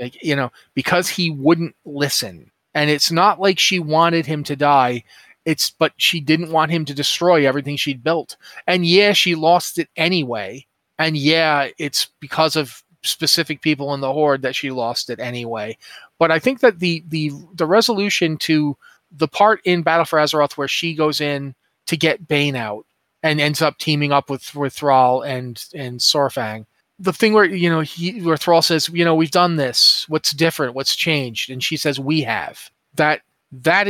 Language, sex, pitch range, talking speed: English, male, 145-170 Hz, 190 wpm